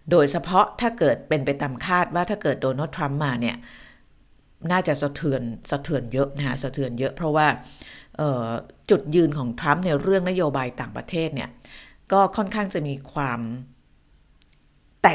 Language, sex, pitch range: Thai, female, 130-170 Hz